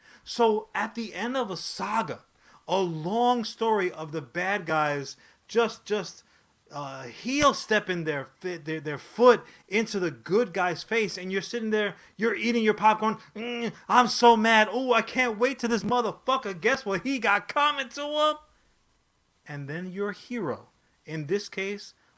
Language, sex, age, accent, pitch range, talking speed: English, male, 30-49, American, 160-230 Hz, 160 wpm